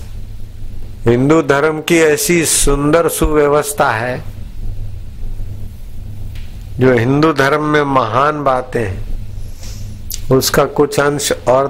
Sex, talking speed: male, 85 wpm